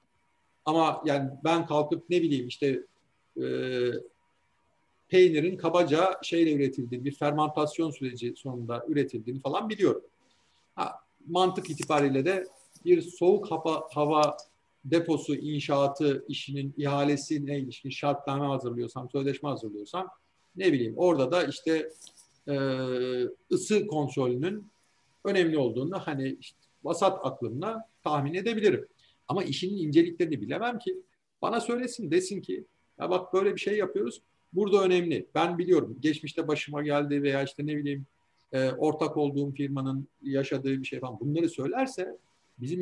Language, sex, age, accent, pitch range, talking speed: Turkish, male, 50-69, native, 140-185 Hz, 125 wpm